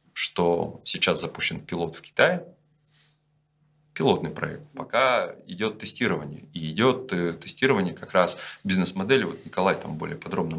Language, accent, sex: Russian, native, male